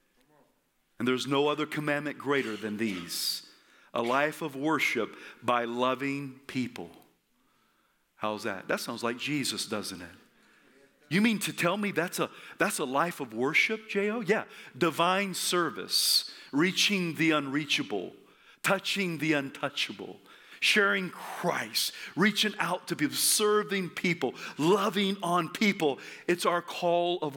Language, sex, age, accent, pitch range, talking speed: English, male, 40-59, American, 120-185 Hz, 130 wpm